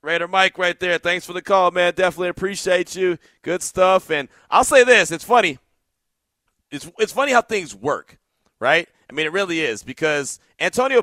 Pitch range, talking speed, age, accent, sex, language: 150-200 Hz, 185 wpm, 30-49, American, male, English